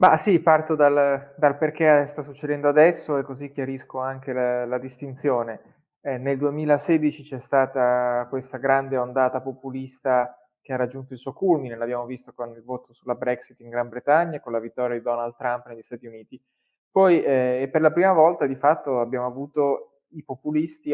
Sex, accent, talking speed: male, native, 180 wpm